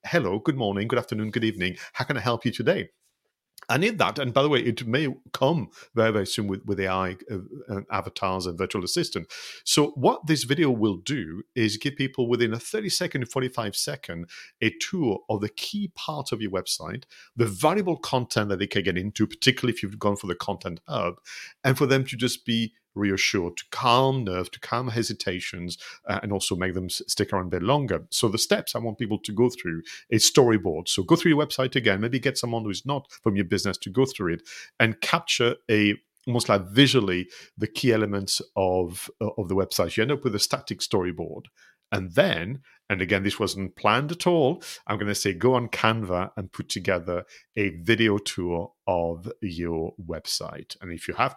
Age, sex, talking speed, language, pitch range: 40-59, male, 210 wpm, English, 95-125 Hz